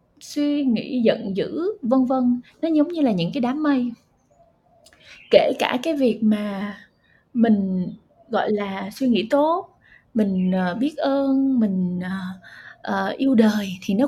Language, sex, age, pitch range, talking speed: Vietnamese, female, 20-39, 215-275 Hz, 140 wpm